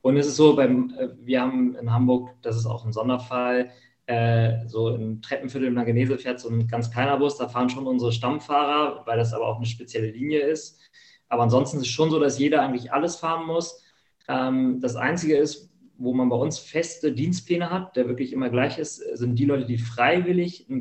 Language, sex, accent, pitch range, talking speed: German, male, German, 120-140 Hz, 210 wpm